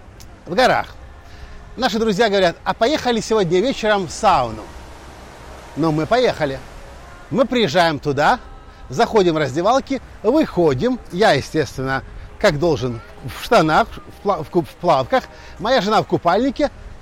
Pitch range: 175-240 Hz